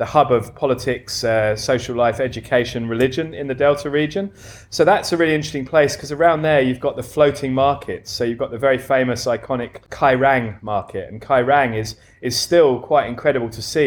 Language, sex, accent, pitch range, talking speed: English, male, British, 115-140 Hz, 195 wpm